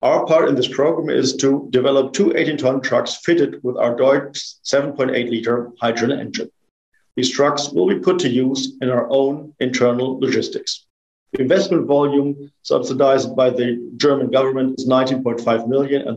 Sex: male